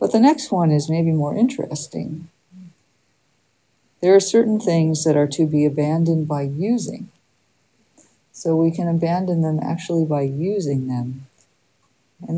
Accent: American